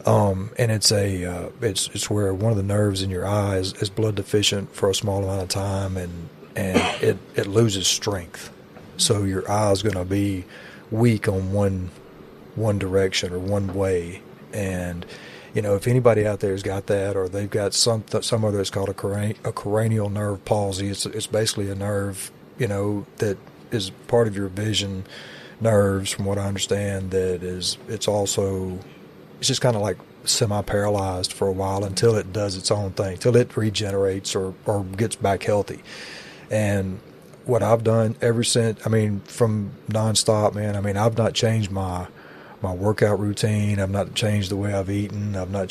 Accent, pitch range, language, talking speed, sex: American, 95-105 Hz, English, 190 wpm, male